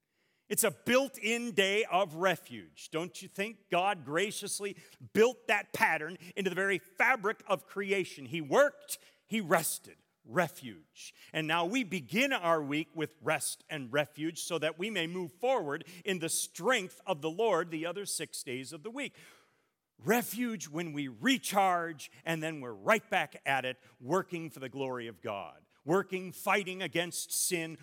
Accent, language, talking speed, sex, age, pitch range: American, English, 160 wpm, male, 40-59, 145-190 Hz